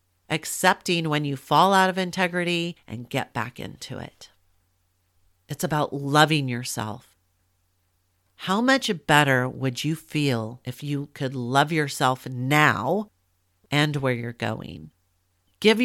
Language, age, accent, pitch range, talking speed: English, 40-59, American, 120-170 Hz, 125 wpm